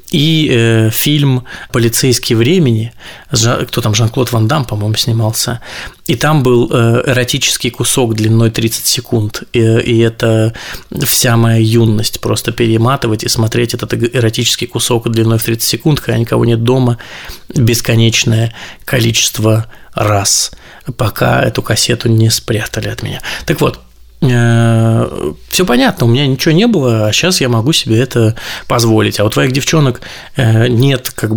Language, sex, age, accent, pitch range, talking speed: Russian, male, 20-39, native, 110-125 Hz, 135 wpm